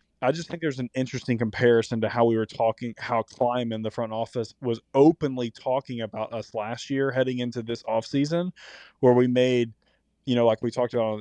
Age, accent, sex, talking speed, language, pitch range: 20-39, American, male, 210 wpm, English, 110-130 Hz